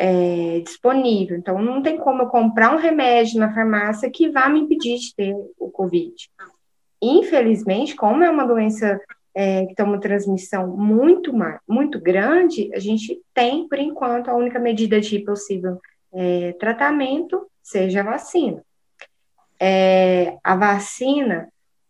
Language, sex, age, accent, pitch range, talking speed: Portuguese, female, 20-39, Brazilian, 200-265 Hz, 140 wpm